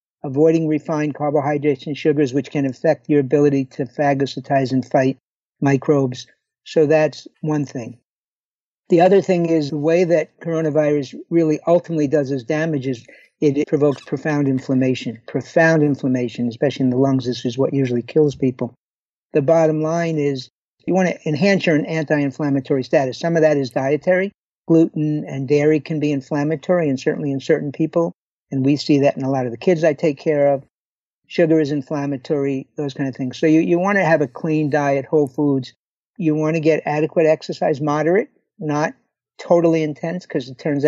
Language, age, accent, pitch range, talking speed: English, 60-79, American, 135-160 Hz, 175 wpm